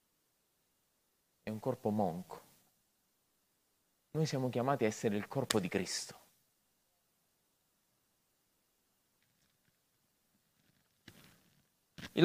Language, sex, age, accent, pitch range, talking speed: Italian, male, 30-49, native, 120-175 Hz, 70 wpm